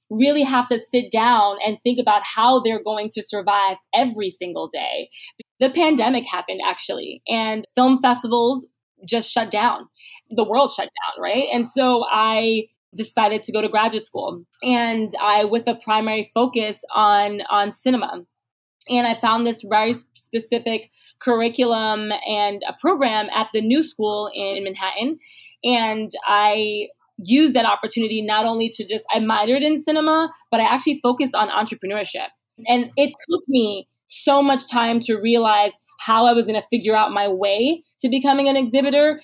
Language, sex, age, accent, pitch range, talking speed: English, female, 20-39, American, 215-250 Hz, 160 wpm